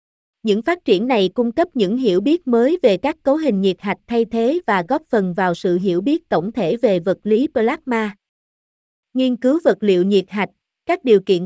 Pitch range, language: 190-245 Hz, Vietnamese